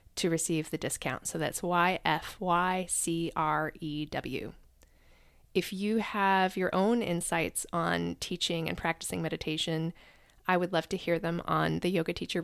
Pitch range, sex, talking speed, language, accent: 160-190 Hz, female, 135 wpm, English, American